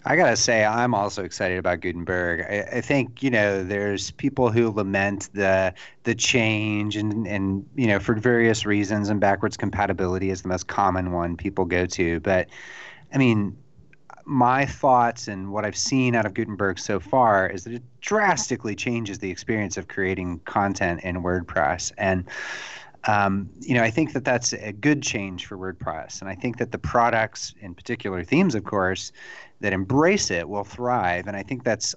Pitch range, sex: 95-120 Hz, male